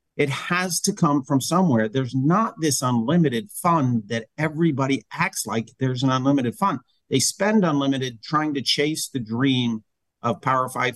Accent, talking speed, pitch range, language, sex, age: American, 165 wpm, 120-165 Hz, English, male, 50-69